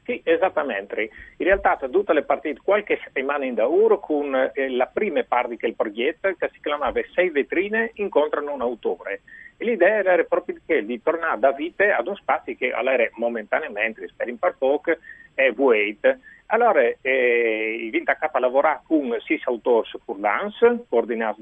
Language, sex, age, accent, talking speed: Italian, male, 40-59, native, 160 wpm